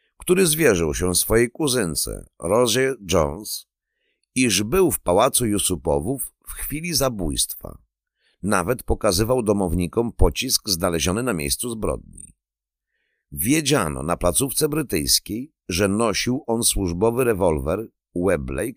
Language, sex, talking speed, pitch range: Polish, male, 105 wpm, 80-115 Hz